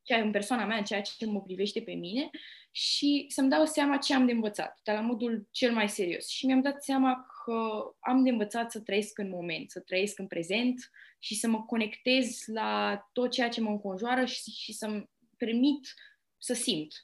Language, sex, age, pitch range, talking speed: Romanian, female, 20-39, 195-240 Hz, 195 wpm